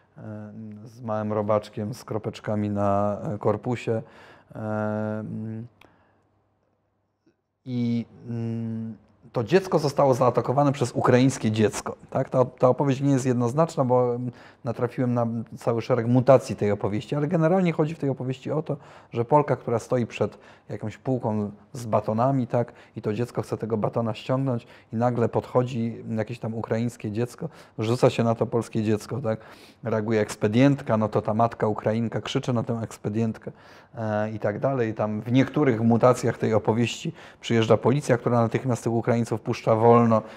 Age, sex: 30-49, male